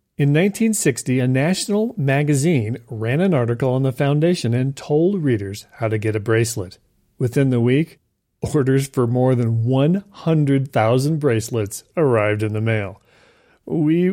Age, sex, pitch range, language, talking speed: 40-59, male, 110-150 Hz, English, 140 wpm